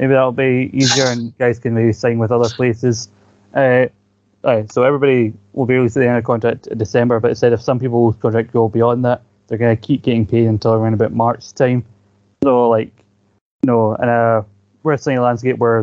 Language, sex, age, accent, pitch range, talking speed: English, male, 20-39, British, 110-125 Hz, 220 wpm